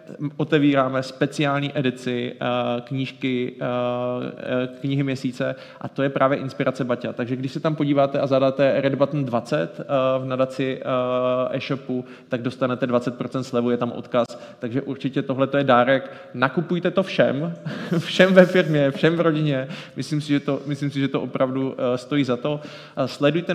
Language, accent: Czech, native